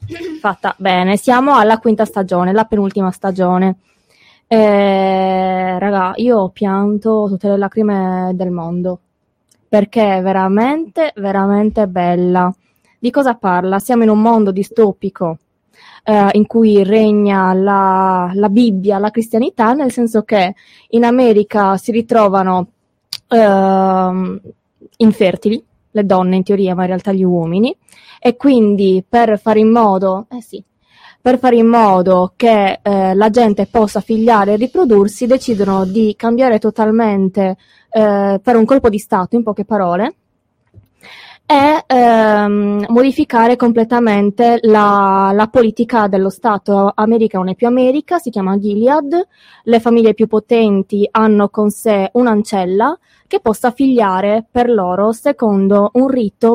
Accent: native